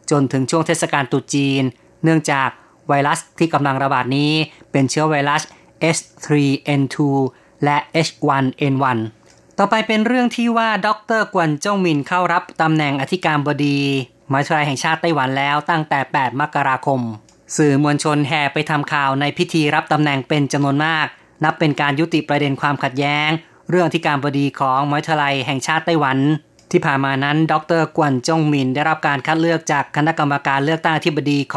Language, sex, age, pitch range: Thai, female, 20-39, 140-165 Hz